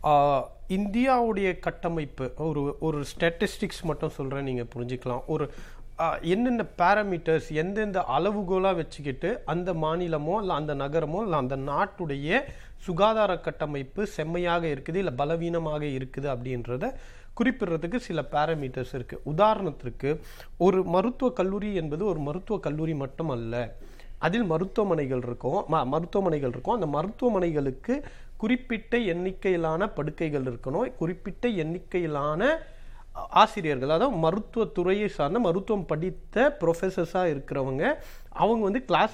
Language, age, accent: Tamil, 40-59, native